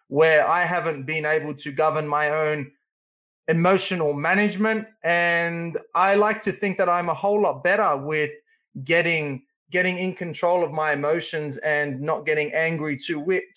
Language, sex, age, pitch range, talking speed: English, male, 20-39, 150-200 Hz, 155 wpm